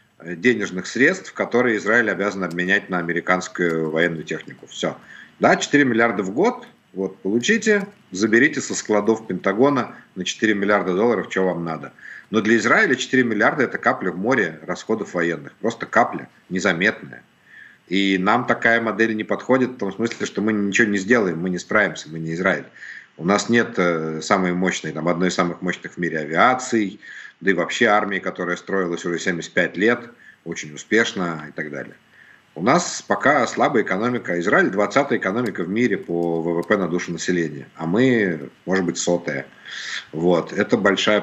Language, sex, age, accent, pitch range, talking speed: Ukrainian, male, 50-69, native, 85-115 Hz, 165 wpm